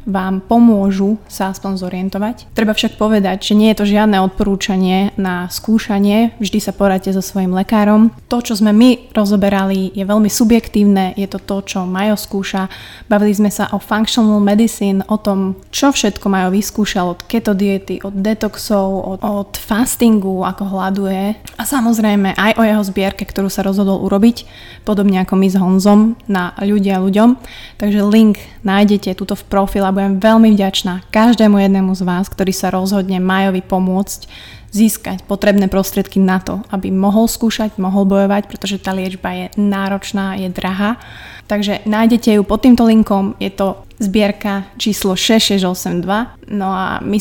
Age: 20-39